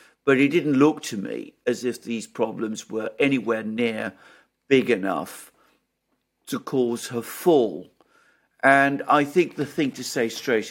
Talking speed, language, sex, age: 150 wpm, English, male, 50-69